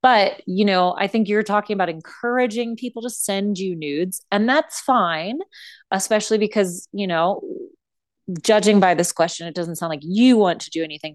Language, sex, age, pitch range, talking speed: English, female, 30-49, 165-225 Hz, 185 wpm